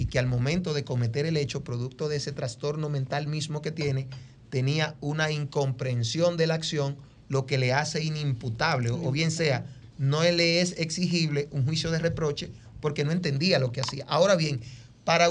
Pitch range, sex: 130-155 Hz, male